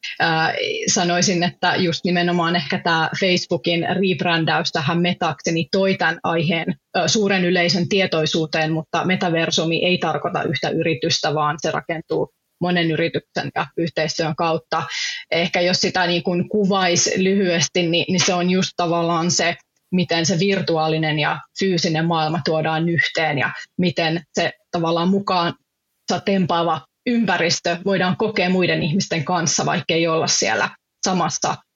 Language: Finnish